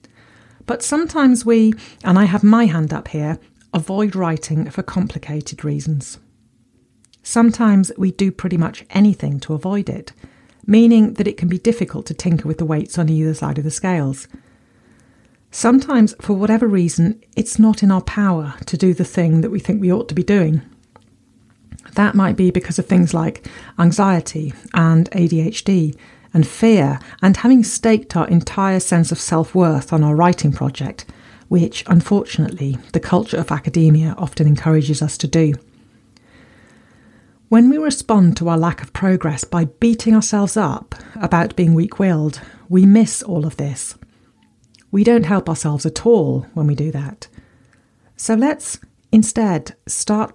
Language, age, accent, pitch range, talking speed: English, 40-59, British, 155-205 Hz, 155 wpm